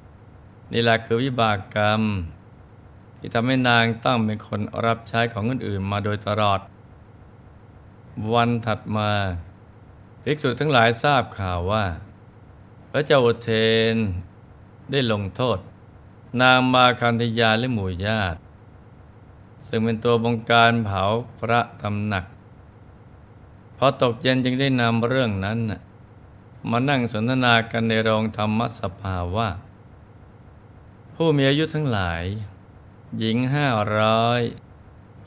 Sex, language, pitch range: male, Thai, 100-115 Hz